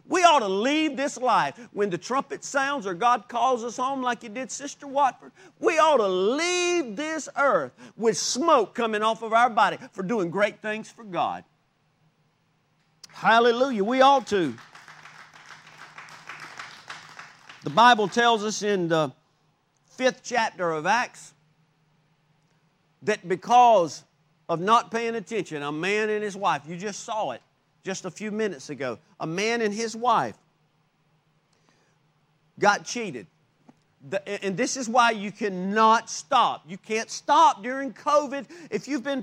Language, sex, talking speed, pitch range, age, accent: English, male, 145 wpm, 160-245 Hz, 50-69, American